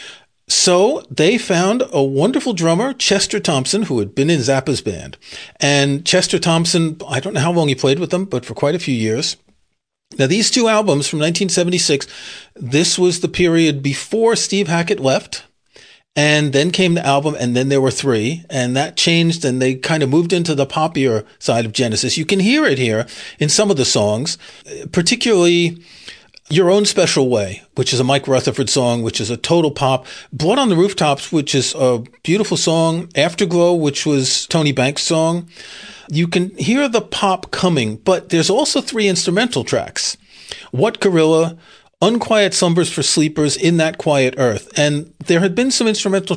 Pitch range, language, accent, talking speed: 135-180 Hz, English, American, 180 wpm